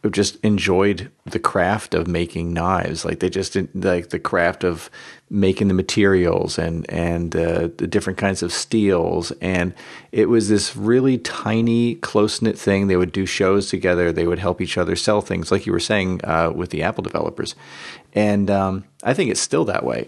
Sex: male